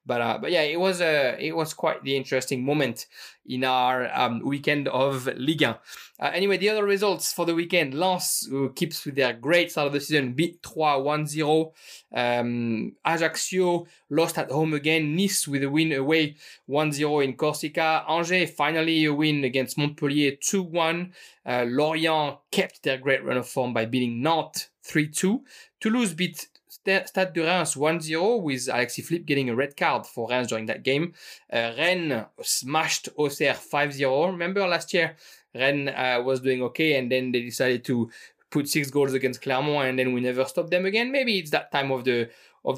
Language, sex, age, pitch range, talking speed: English, male, 20-39, 130-160 Hz, 180 wpm